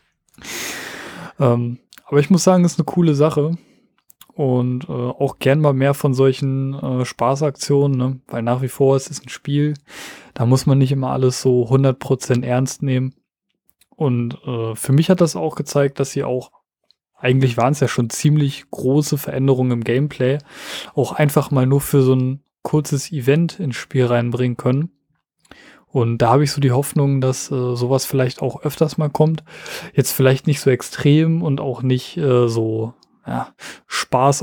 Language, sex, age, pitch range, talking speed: German, male, 20-39, 125-150 Hz, 170 wpm